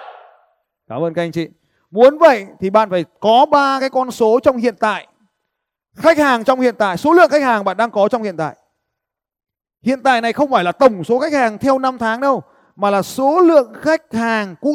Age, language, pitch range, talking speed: 20-39, Vietnamese, 215-285 Hz, 220 wpm